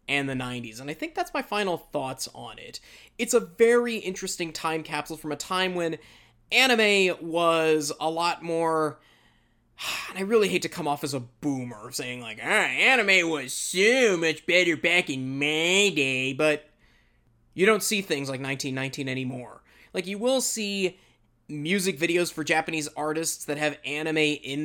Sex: male